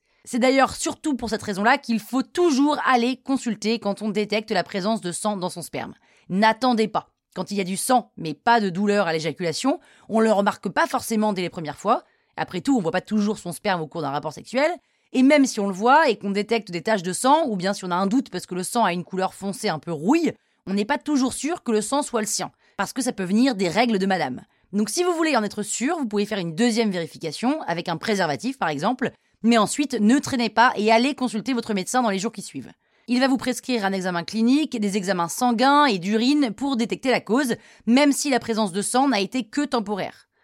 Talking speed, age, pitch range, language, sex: 250 wpm, 30-49, 190-250 Hz, French, female